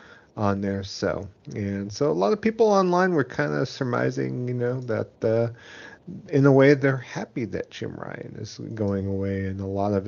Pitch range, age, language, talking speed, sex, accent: 100-115 Hz, 40-59, English, 195 wpm, male, American